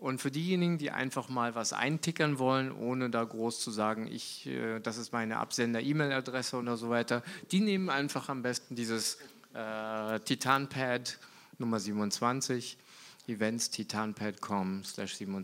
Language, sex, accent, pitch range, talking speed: German, male, German, 115-145 Hz, 130 wpm